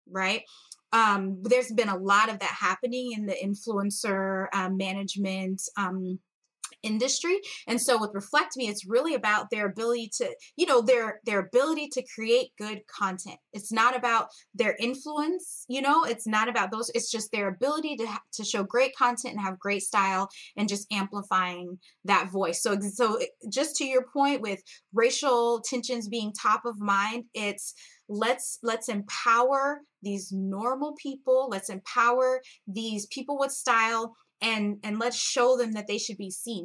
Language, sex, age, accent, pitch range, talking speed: English, female, 20-39, American, 210-275 Hz, 165 wpm